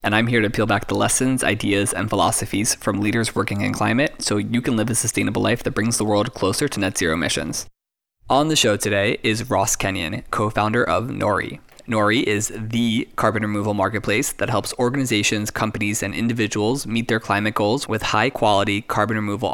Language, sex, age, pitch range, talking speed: English, male, 20-39, 105-120 Hz, 190 wpm